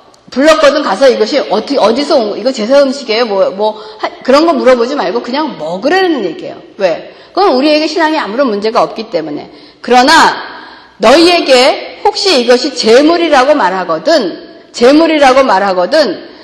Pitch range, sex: 240-335 Hz, female